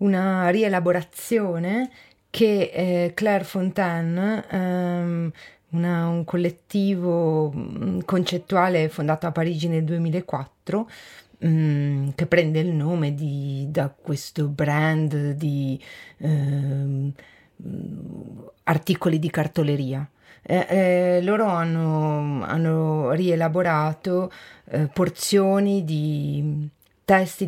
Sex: female